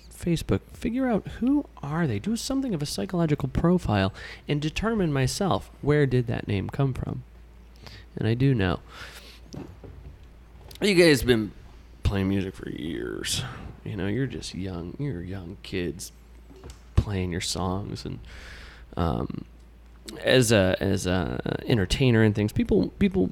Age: 20-39